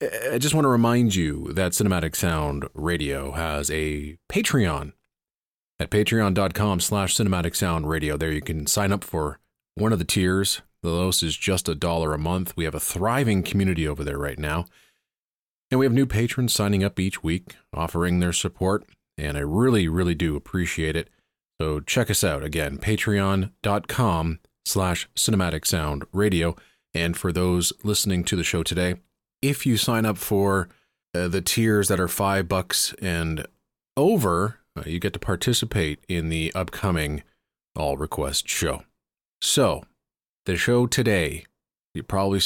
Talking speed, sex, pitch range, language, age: 155 wpm, male, 80-105 Hz, English, 30-49